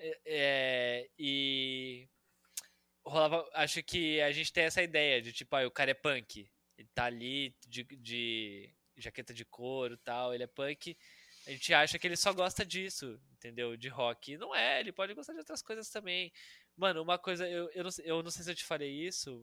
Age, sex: 10-29, male